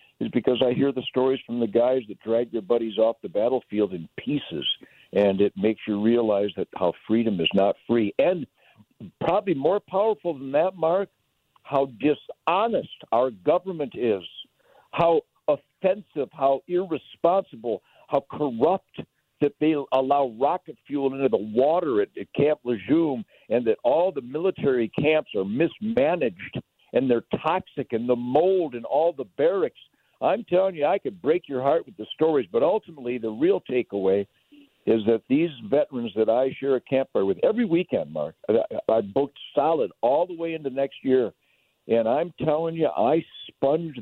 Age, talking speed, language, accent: 60-79, 165 wpm, English, American